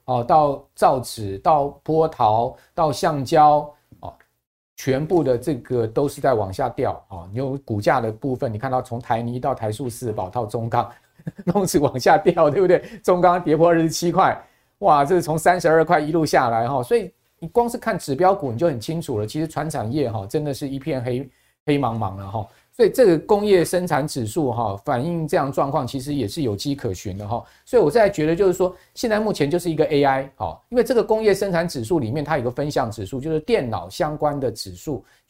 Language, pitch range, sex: Chinese, 120-165 Hz, male